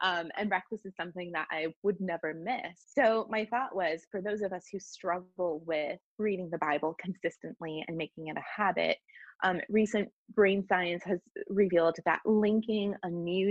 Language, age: English, 20-39